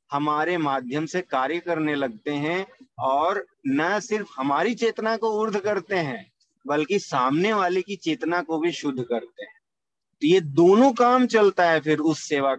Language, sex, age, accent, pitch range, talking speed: Hindi, male, 40-59, native, 165-220 Hz, 165 wpm